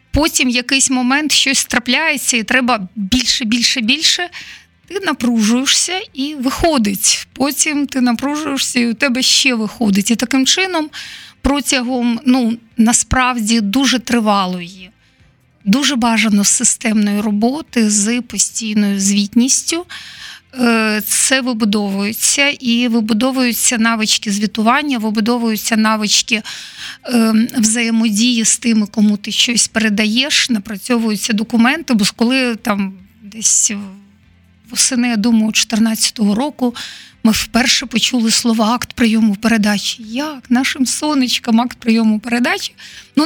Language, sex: Ukrainian, female